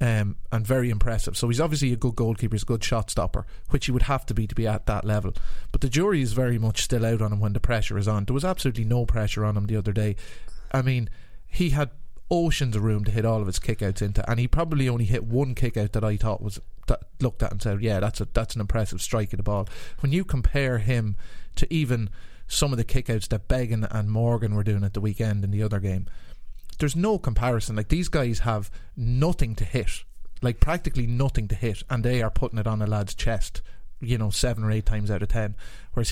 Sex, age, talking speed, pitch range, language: male, 30-49, 245 wpm, 105-125 Hz, English